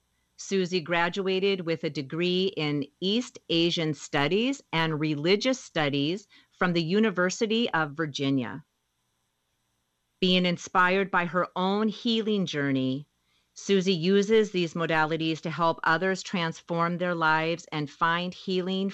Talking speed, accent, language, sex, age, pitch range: 115 wpm, American, English, female, 40-59, 145-190 Hz